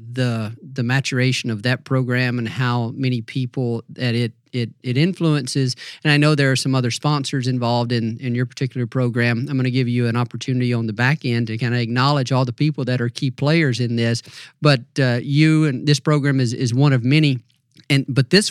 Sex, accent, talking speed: male, American, 215 wpm